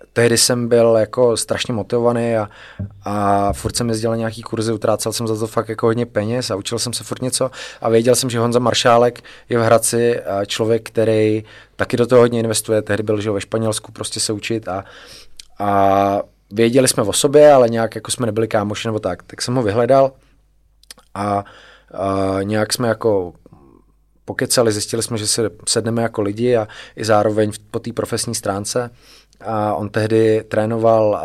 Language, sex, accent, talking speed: Czech, male, native, 180 wpm